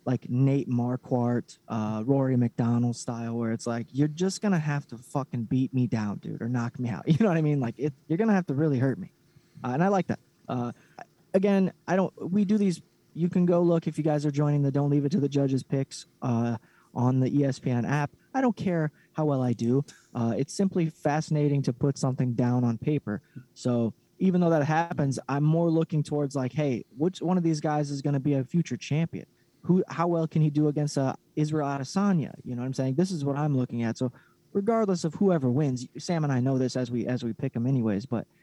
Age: 20-39